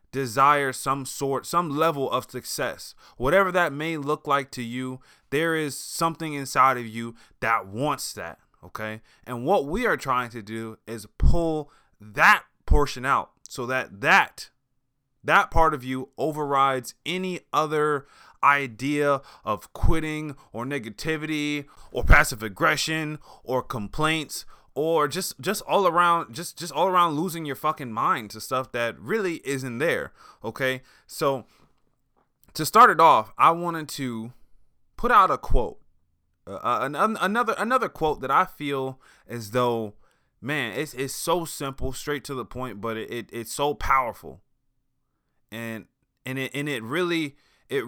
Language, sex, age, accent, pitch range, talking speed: English, male, 20-39, American, 120-155 Hz, 150 wpm